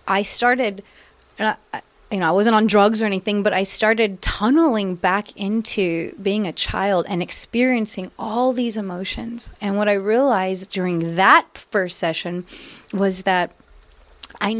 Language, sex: English, female